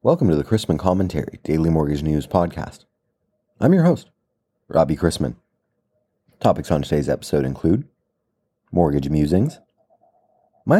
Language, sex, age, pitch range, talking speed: English, male, 30-49, 75-105 Hz, 120 wpm